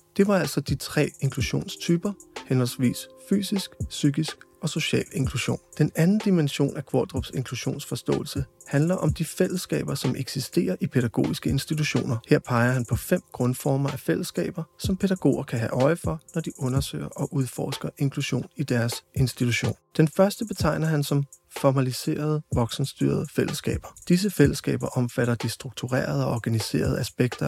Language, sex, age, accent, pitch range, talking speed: Danish, male, 30-49, native, 125-165 Hz, 145 wpm